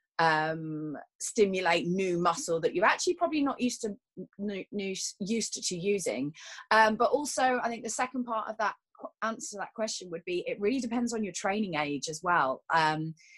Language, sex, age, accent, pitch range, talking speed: English, female, 30-49, British, 170-225 Hz, 180 wpm